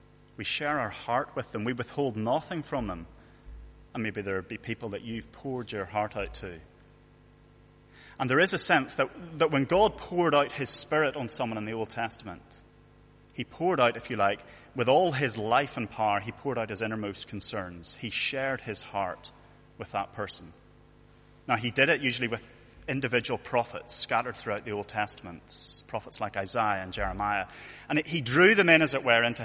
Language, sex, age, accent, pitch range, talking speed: English, male, 30-49, British, 105-135 Hz, 195 wpm